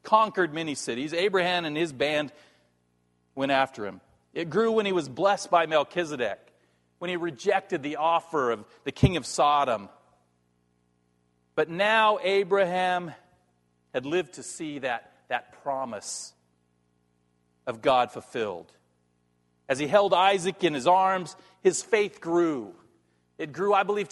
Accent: American